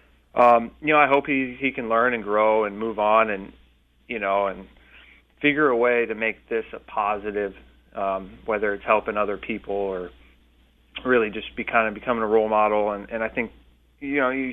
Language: English